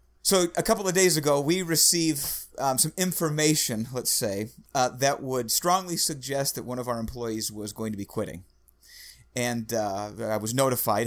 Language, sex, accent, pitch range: English, male, American, 135-185 Hz